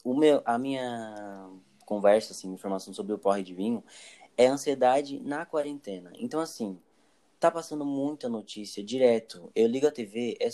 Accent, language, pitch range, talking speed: Brazilian, Portuguese, 120-165 Hz, 160 wpm